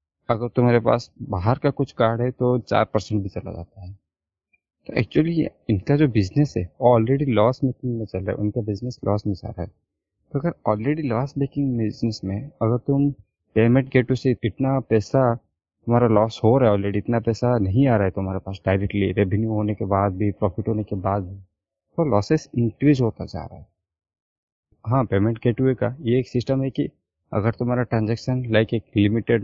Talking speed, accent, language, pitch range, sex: 200 wpm, native, Hindi, 105-130 Hz, male